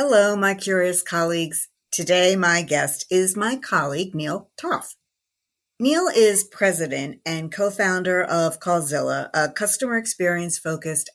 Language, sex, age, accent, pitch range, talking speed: English, female, 50-69, American, 160-200 Hz, 120 wpm